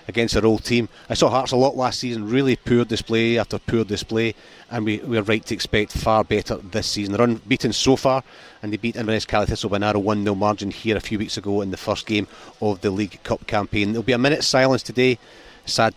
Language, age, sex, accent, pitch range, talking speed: English, 30-49, male, British, 105-120 Hz, 235 wpm